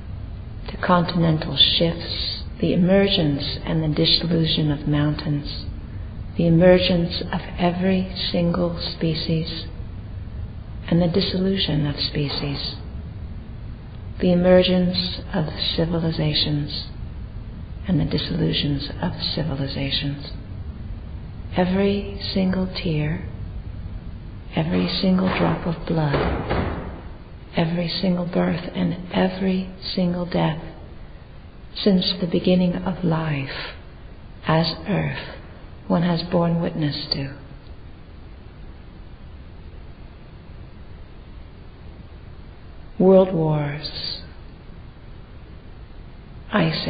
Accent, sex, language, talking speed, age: American, female, English, 75 wpm, 40-59